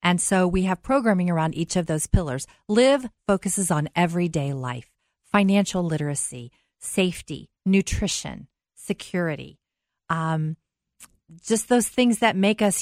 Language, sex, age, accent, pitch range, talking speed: English, female, 40-59, American, 155-200 Hz, 125 wpm